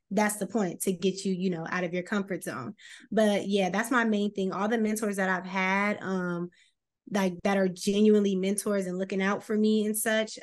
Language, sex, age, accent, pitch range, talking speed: English, female, 20-39, American, 180-210 Hz, 225 wpm